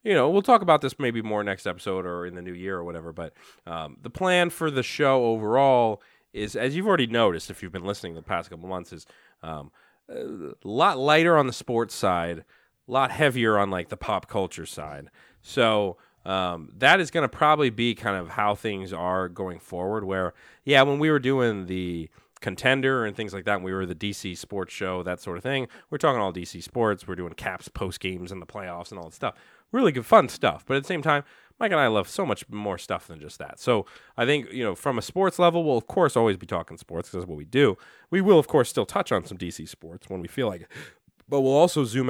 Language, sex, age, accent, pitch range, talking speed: English, male, 30-49, American, 90-135 Hz, 240 wpm